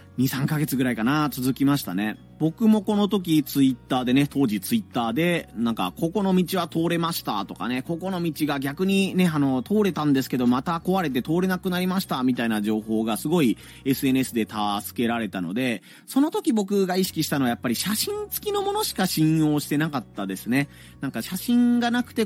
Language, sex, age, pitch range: Japanese, male, 30-49, 115-185 Hz